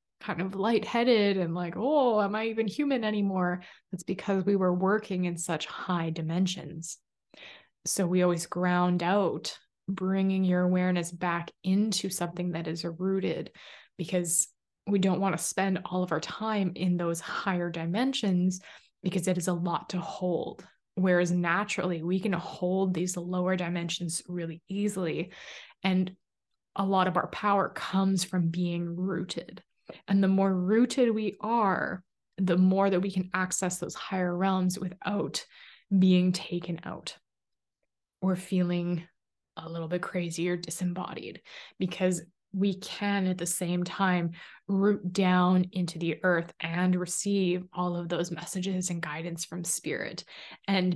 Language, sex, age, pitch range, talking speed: English, female, 20-39, 175-195 Hz, 145 wpm